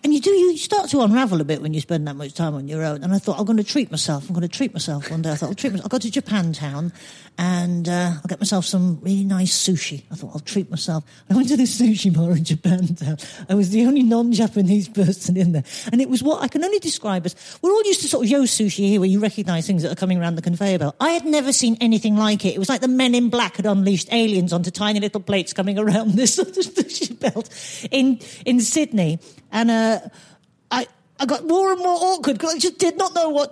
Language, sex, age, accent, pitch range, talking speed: English, female, 40-59, British, 185-260 Hz, 265 wpm